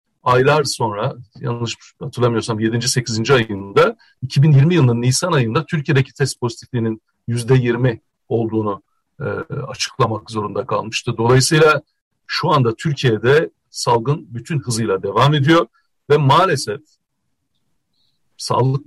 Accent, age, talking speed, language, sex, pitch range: native, 60-79, 100 wpm, Turkish, male, 120-150 Hz